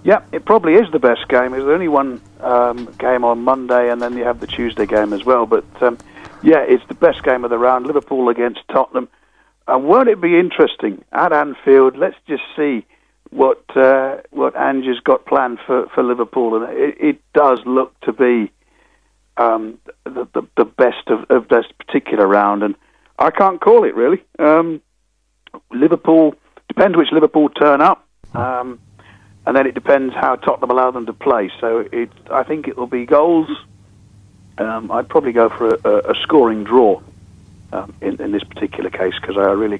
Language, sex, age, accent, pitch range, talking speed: English, male, 50-69, British, 110-160 Hz, 185 wpm